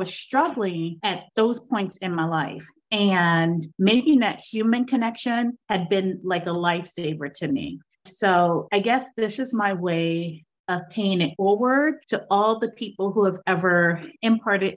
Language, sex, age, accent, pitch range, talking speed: English, female, 30-49, American, 175-215 Hz, 160 wpm